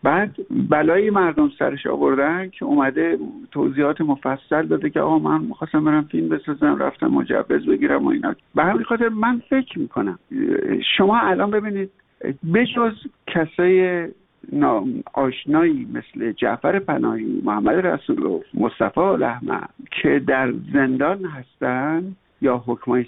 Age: 60-79